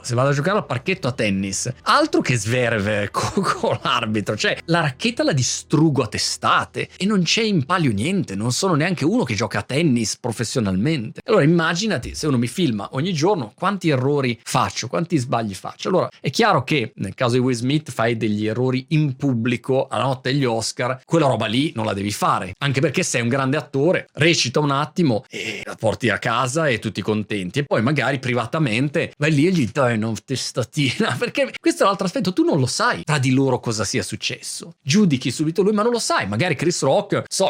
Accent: native